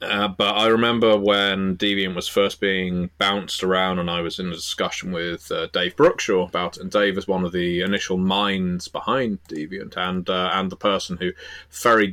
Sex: male